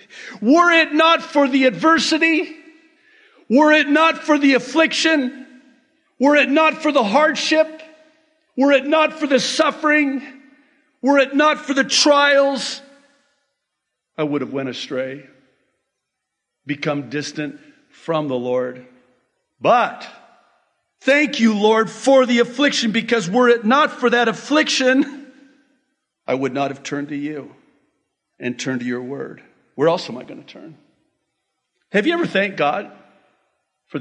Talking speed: 140 wpm